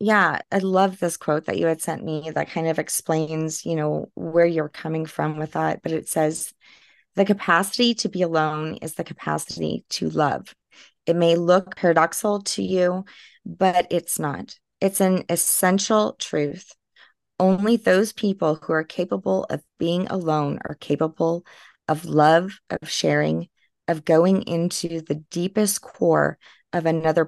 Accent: American